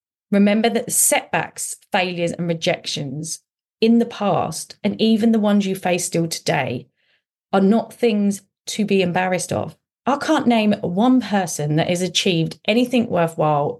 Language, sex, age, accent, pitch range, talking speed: English, female, 30-49, British, 160-210 Hz, 150 wpm